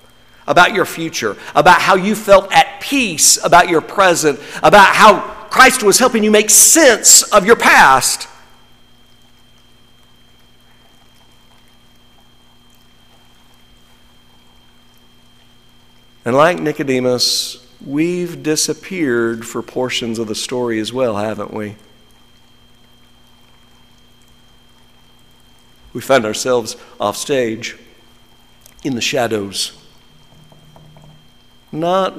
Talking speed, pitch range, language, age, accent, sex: 85 wpm, 110-165 Hz, English, 50-69, American, male